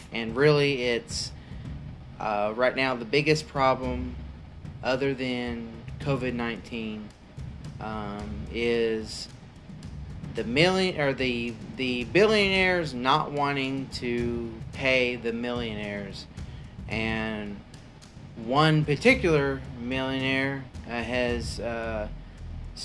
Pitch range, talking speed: 110-130 Hz, 85 wpm